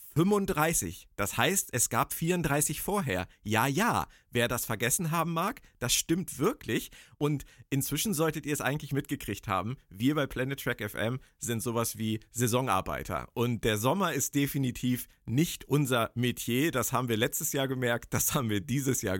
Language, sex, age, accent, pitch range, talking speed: German, male, 50-69, German, 105-140 Hz, 165 wpm